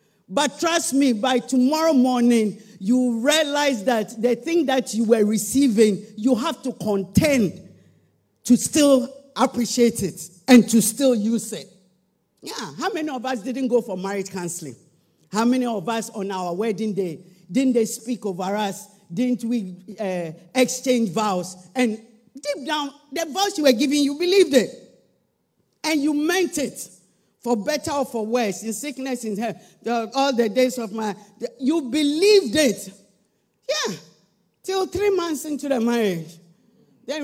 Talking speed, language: 160 wpm, English